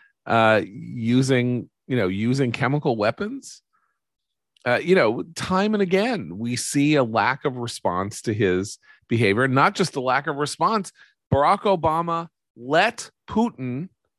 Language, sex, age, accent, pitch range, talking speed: English, male, 40-59, American, 110-170 Hz, 135 wpm